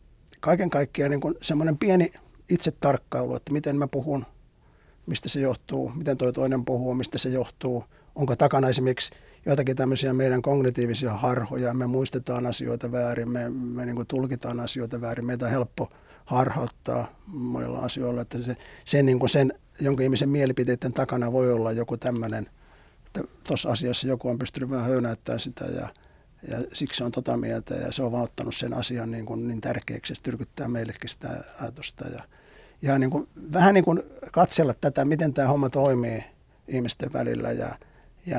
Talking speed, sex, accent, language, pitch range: 165 wpm, male, native, Finnish, 120-140 Hz